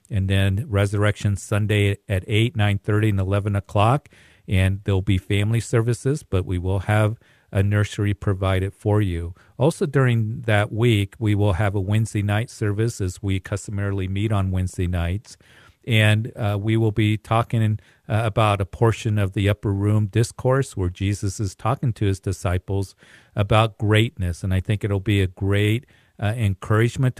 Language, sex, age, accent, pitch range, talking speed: English, male, 50-69, American, 100-115 Hz, 165 wpm